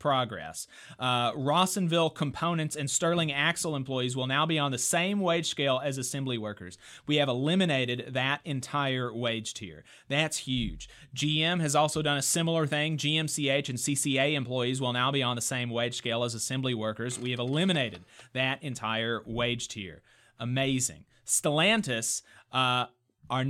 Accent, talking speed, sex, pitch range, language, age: American, 155 wpm, male, 125-170 Hz, English, 30-49